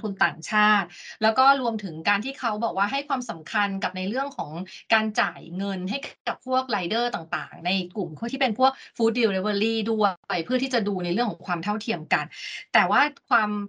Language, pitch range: Thai, 175-235 Hz